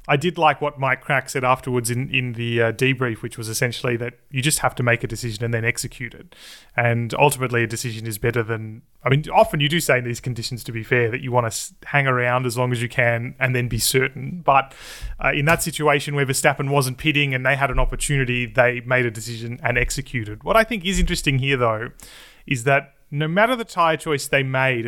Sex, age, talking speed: male, 30-49, 235 wpm